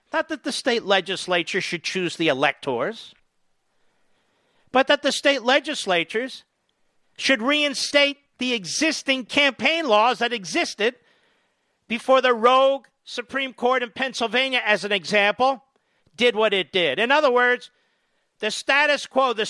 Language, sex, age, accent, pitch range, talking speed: English, male, 50-69, American, 210-275 Hz, 130 wpm